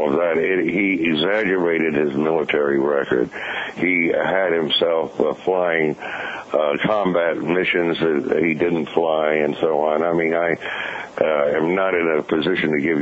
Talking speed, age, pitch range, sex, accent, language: 155 wpm, 60-79, 80-90 Hz, male, American, English